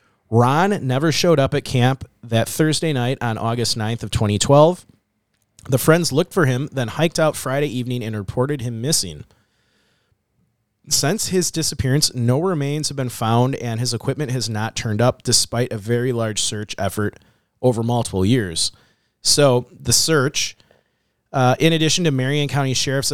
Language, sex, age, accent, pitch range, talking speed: English, male, 30-49, American, 115-150 Hz, 160 wpm